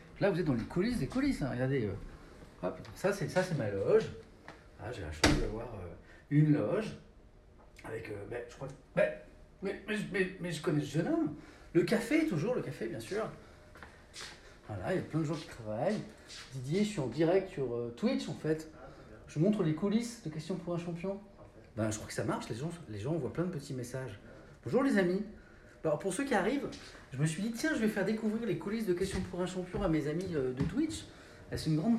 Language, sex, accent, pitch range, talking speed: French, male, French, 135-200 Hz, 230 wpm